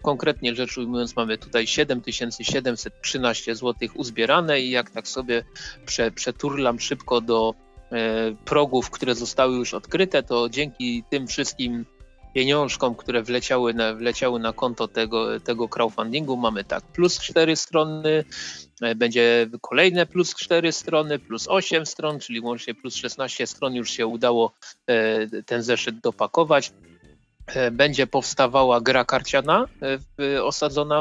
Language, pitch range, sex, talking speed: Polish, 115-140 Hz, male, 120 wpm